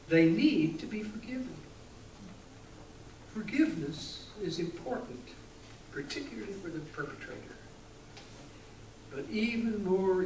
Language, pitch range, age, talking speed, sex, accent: English, 140-200 Hz, 60-79, 90 wpm, male, American